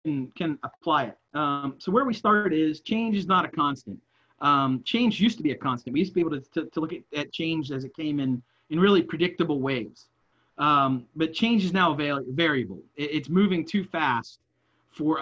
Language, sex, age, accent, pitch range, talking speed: English, male, 40-59, American, 145-195 Hz, 205 wpm